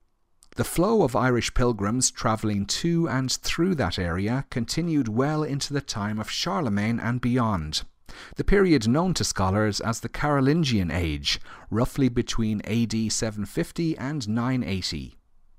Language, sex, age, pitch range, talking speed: English, male, 40-59, 100-135 Hz, 135 wpm